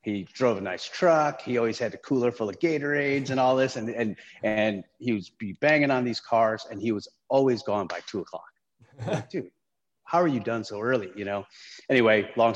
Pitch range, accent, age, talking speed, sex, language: 105-130 Hz, American, 30-49, 220 wpm, male, English